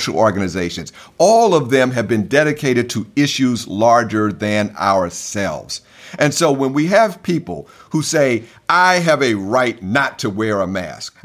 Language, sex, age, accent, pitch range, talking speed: English, male, 50-69, American, 100-140 Hz, 155 wpm